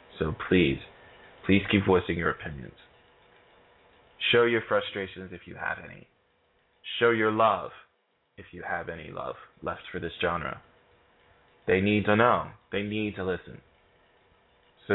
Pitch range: 90-105 Hz